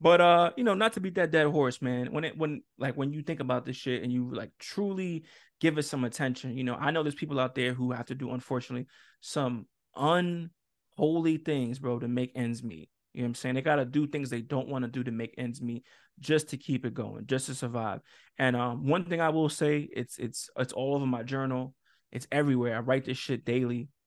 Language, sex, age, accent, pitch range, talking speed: English, male, 20-39, American, 120-150 Hz, 240 wpm